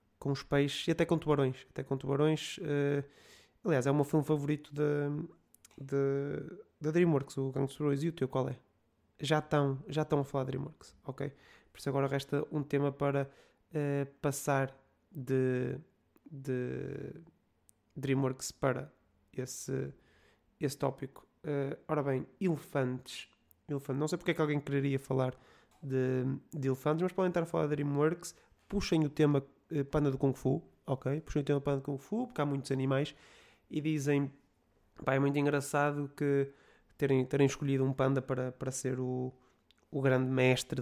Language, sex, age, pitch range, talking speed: Portuguese, male, 20-39, 135-150 Hz, 155 wpm